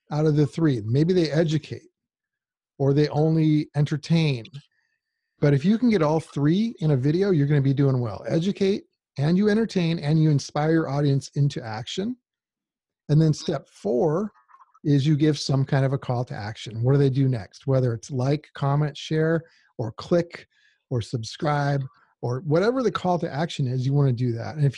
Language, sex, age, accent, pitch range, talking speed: English, male, 40-59, American, 135-170 Hz, 190 wpm